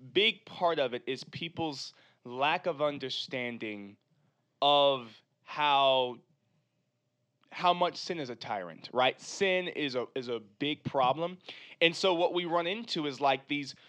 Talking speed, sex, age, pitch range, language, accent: 145 wpm, male, 20-39, 135-180 Hz, English, American